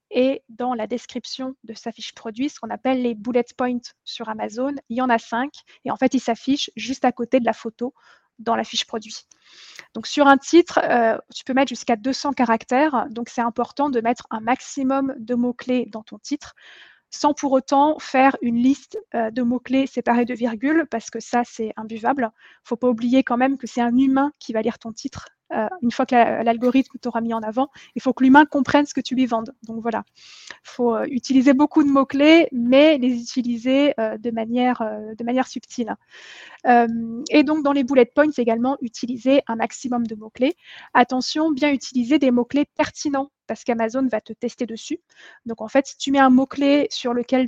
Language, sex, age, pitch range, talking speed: French, female, 20-39, 235-270 Hz, 205 wpm